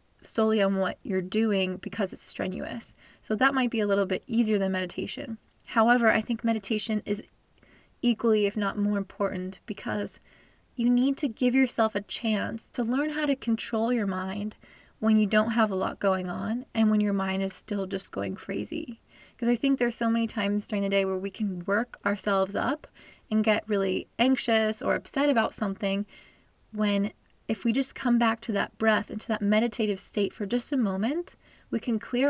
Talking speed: 195 wpm